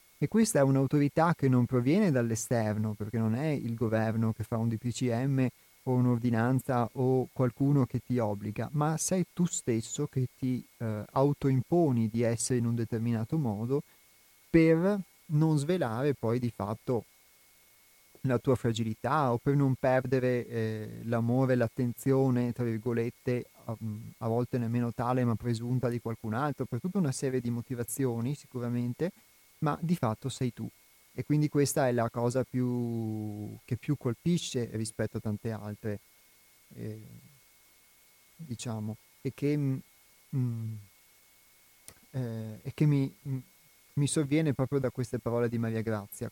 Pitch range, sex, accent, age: 115-140 Hz, male, native, 30-49